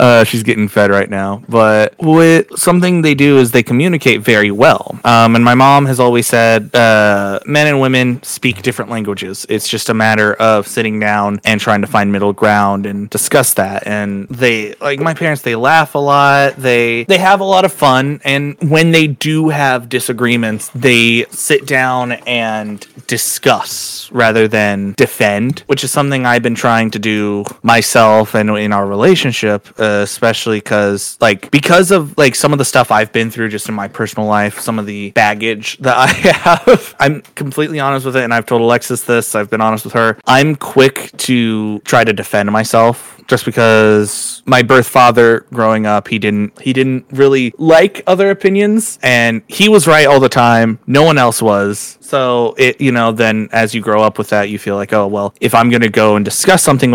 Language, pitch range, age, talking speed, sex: English, 105-135 Hz, 20-39, 195 wpm, male